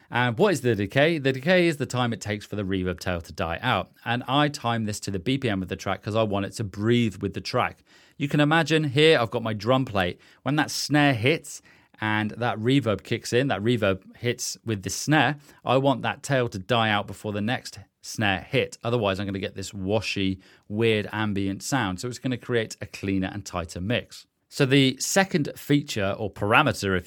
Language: English